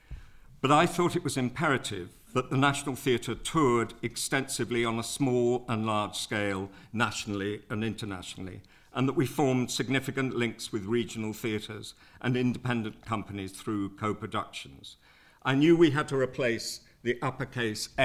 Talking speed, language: 145 wpm, English